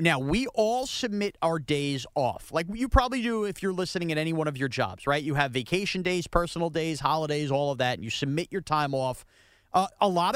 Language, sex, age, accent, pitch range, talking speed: English, male, 30-49, American, 135-190 Hz, 230 wpm